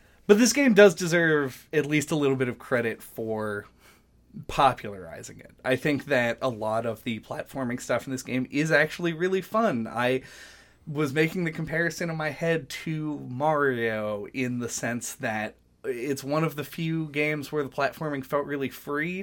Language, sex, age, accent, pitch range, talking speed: English, male, 20-39, American, 115-155 Hz, 180 wpm